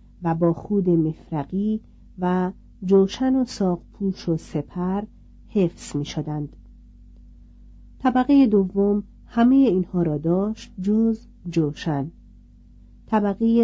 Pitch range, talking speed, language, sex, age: 165-215 Hz, 95 wpm, Persian, female, 50-69